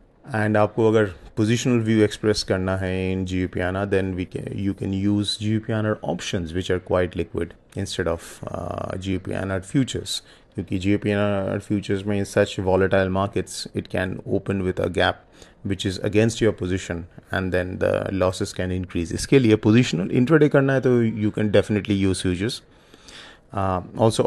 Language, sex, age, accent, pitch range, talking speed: English, male, 30-49, Indian, 95-110 Hz, 155 wpm